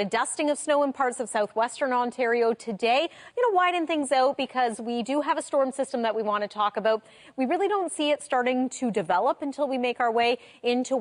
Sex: female